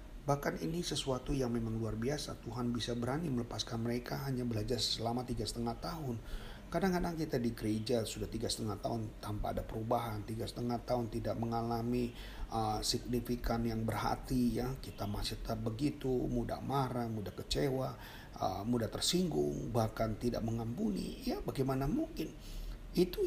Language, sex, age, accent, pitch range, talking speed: Indonesian, male, 40-59, native, 110-135 Hz, 145 wpm